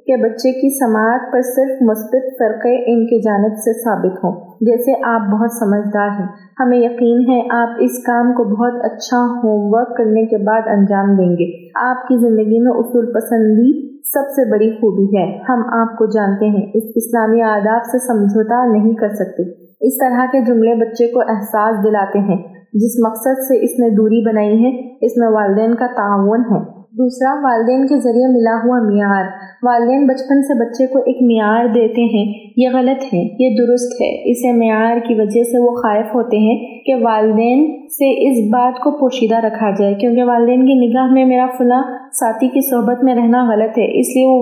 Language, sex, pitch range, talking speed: Urdu, female, 220-250 Hz, 190 wpm